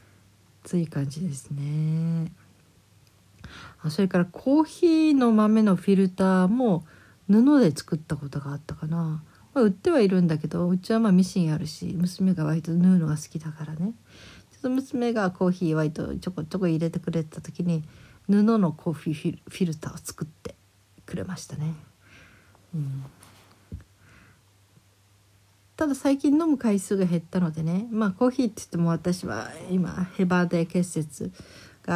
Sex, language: female, Japanese